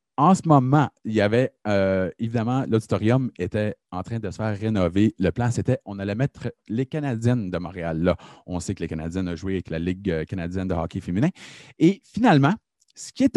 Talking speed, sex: 205 wpm, male